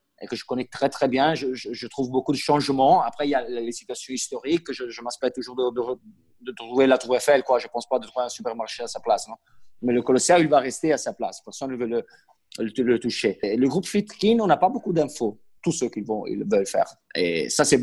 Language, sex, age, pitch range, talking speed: French, male, 30-49, 125-190 Hz, 265 wpm